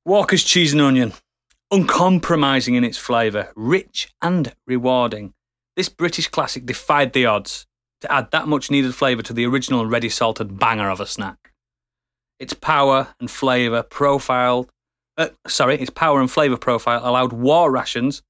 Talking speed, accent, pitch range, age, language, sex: 155 wpm, British, 120-155 Hz, 30-49, English, male